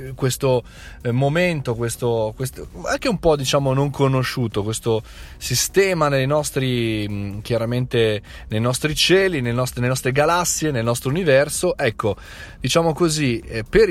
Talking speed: 130 wpm